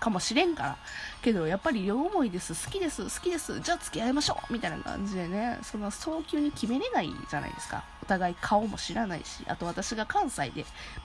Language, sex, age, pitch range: Japanese, female, 20-39, 195-295 Hz